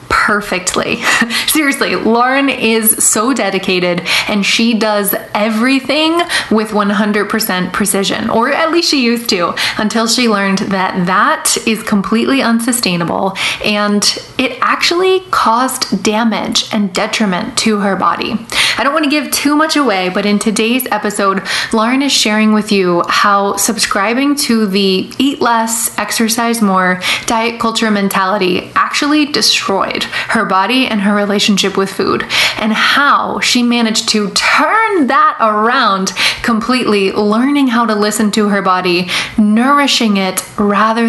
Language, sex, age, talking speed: English, female, 20-39, 135 wpm